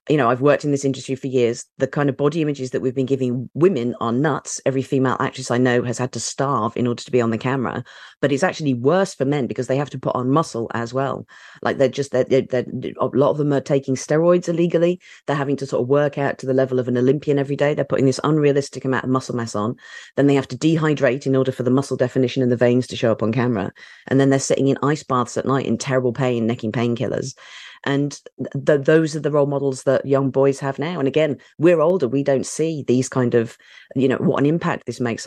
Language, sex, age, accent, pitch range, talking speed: English, female, 40-59, British, 120-145 Hz, 260 wpm